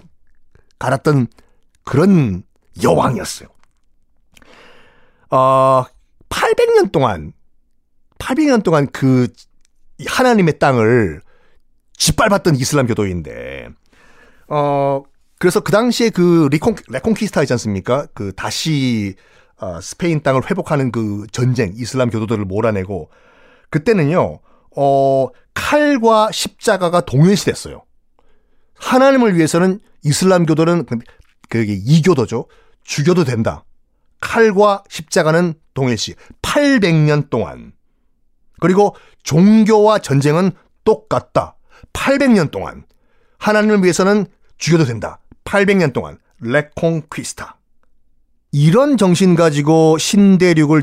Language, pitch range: Korean, 130-205 Hz